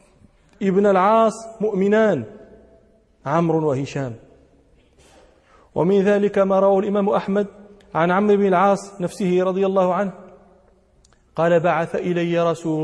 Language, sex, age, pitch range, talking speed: Arabic, male, 40-59, 160-195 Hz, 105 wpm